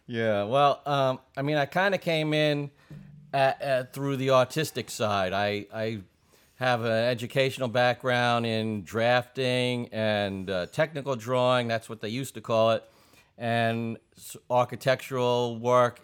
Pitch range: 105-125 Hz